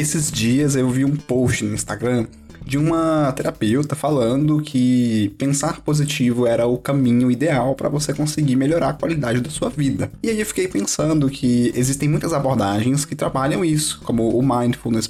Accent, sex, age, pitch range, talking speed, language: Brazilian, male, 10-29, 115-150 Hz, 170 wpm, Portuguese